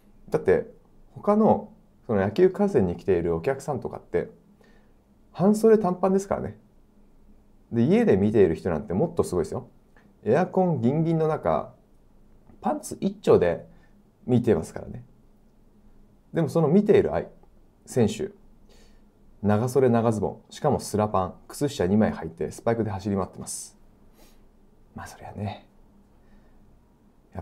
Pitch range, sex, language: 105-170 Hz, male, Japanese